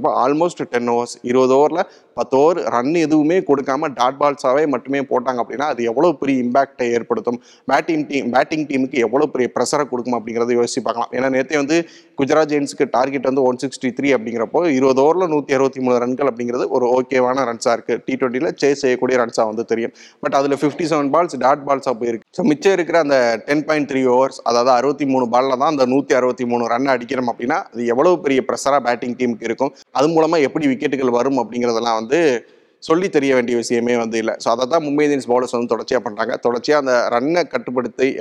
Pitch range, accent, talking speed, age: 120-145 Hz, native, 185 wpm, 30-49